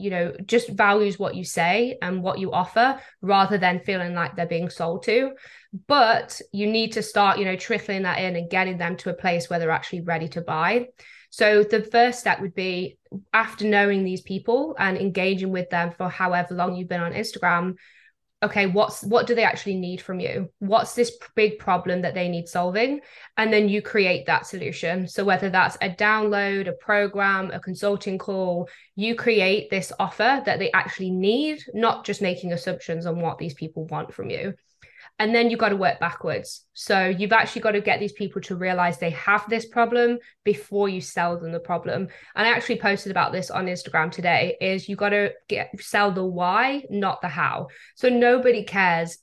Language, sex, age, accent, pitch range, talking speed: English, female, 20-39, British, 180-215 Hz, 200 wpm